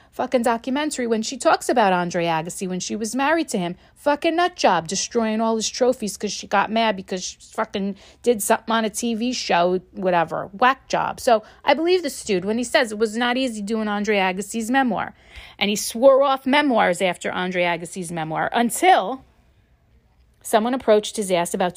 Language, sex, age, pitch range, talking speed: English, female, 40-59, 185-255 Hz, 185 wpm